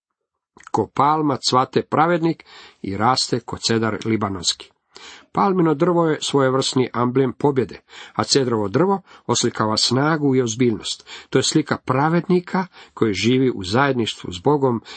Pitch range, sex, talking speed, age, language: 110-150 Hz, male, 130 wpm, 50-69, Croatian